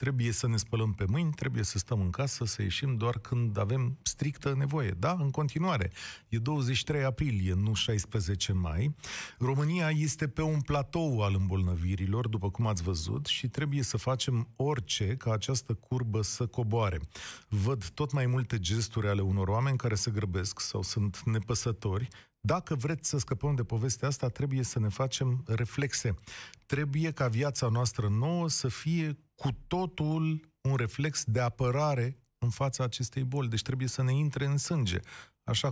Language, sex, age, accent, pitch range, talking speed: Romanian, male, 40-59, native, 110-140 Hz, 165 wpm